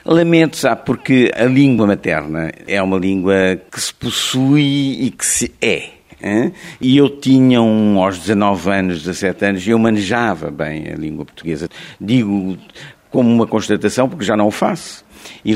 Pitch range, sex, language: 100-145 Hz, male, Portuguese